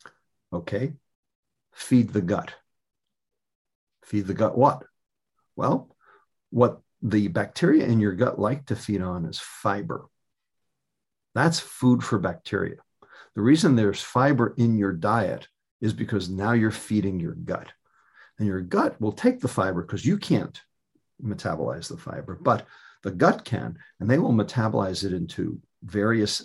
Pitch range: 100-130 Hz